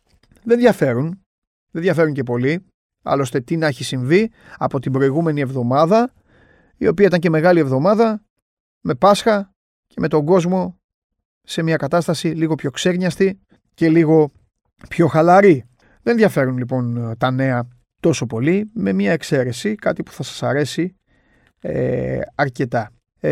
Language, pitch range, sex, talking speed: Greek, 120-165 Hz, male, 135 wpm